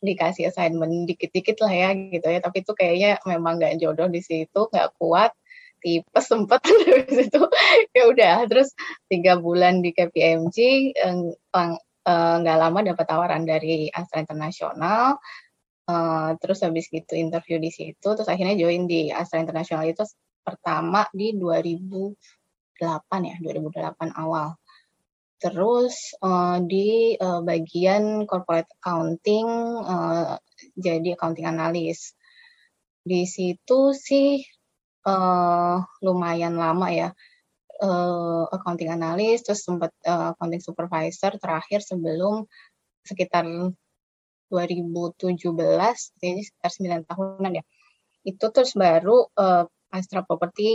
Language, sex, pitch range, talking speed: Indonesian, female, 165-205 Hz, 110 wpm